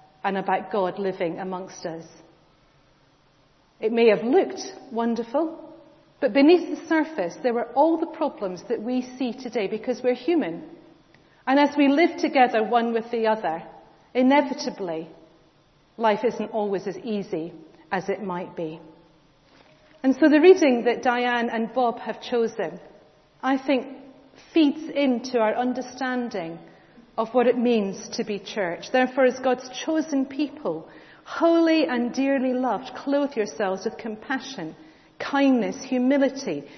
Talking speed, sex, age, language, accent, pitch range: 135 wpm, female, 40-59, English, British, 195-265 Hz